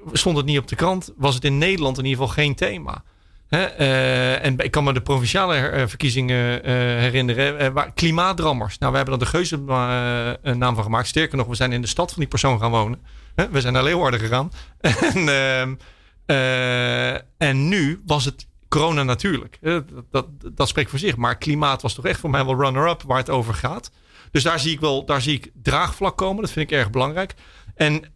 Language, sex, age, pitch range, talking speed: Dutch, male, 40-59, 130-175 Hz, 215 wpm